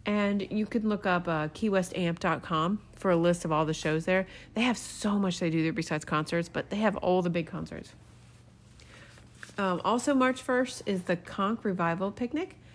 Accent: American